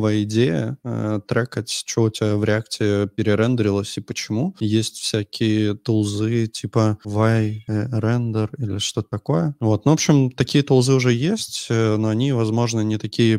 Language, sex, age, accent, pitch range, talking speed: Russian, male, 20-39, native, 100-115 Hz, 145 wpm